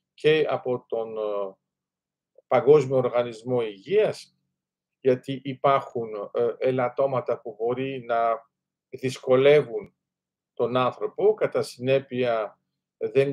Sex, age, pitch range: male, 50-69, 135-180 Hz